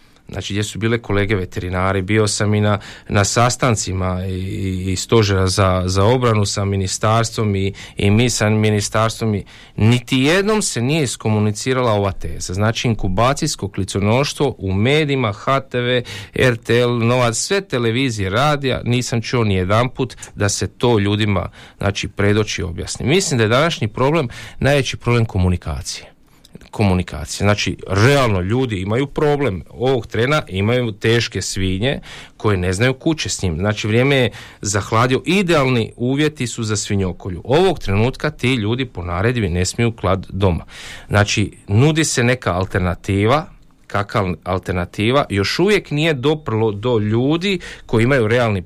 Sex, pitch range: male, 100-125 Hz